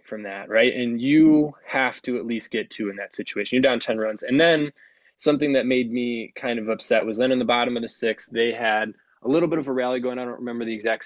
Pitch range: 110-130 Hz